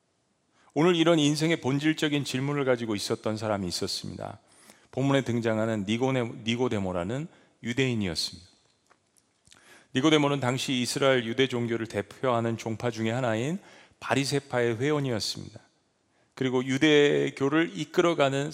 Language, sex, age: Korean, male, 40-59